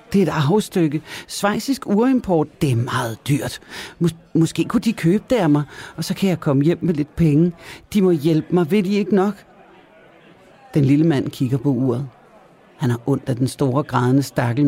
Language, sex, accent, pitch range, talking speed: Danish, male, native, 135-180 Hz, 200 wpm